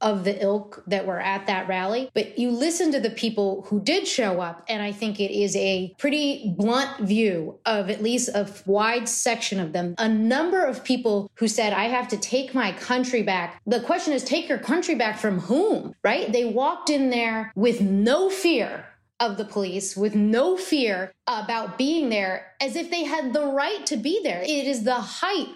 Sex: female